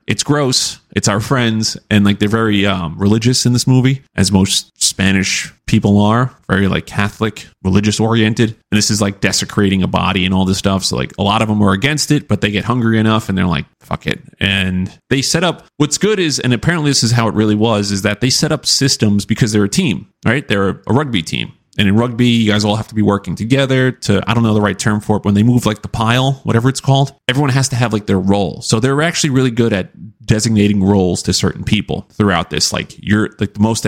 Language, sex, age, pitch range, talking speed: English, male, 30-49, 100-120 Hz, 245 wpm